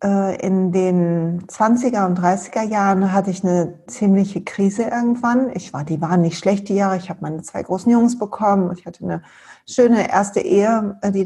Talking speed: 180 wpm